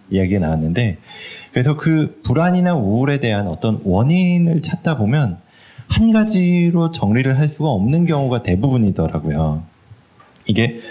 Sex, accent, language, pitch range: male, native, Korean, 95-150 Hz